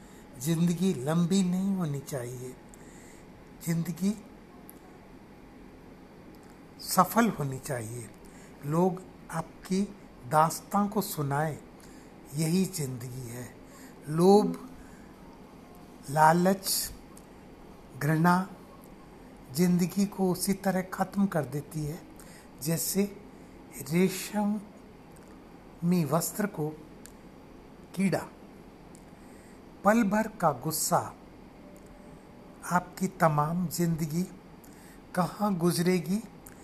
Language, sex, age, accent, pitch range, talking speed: Hindi, male, 60-79, native, 150-185 Hz, 70 wpm